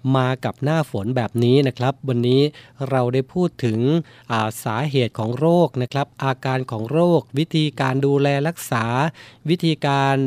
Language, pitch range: Thai, 120-145 Hz